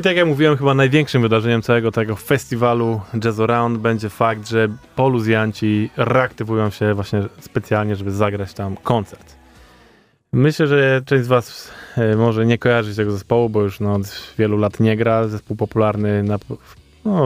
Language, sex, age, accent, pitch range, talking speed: Polish, male, 20-39, native, 105-120 Hz, 160 wpm